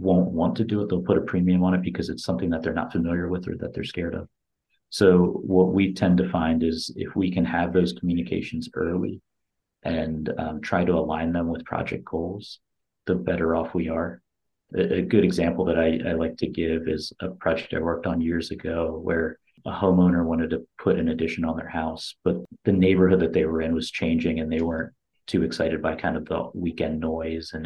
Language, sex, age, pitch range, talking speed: English, male, 30-49, 80-95 Hz, 220 wpm